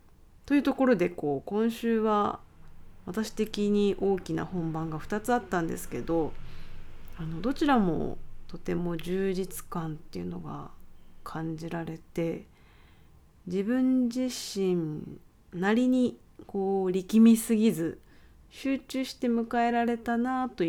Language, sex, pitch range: Japanese, female, 160-225 Hz